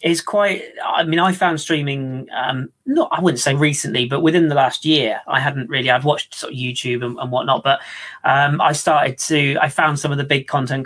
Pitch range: 130-170 Hz